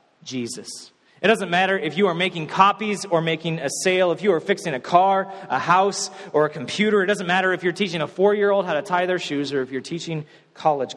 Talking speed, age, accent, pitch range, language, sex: 230 wpm, 30-49, American, 130-165 Hz, English, male